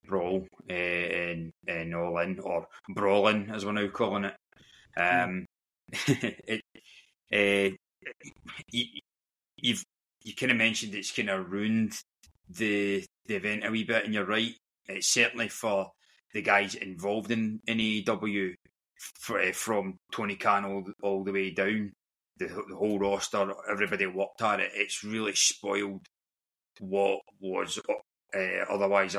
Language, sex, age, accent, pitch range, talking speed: English, male, 20-39, British, 95-105 Hz, 140 wpm